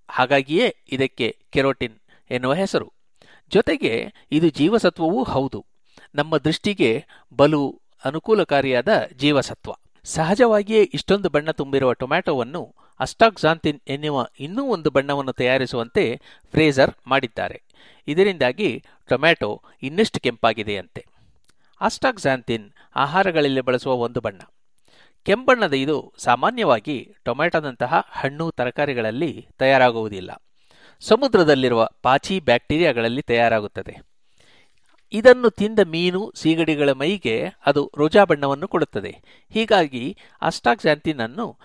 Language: Kannada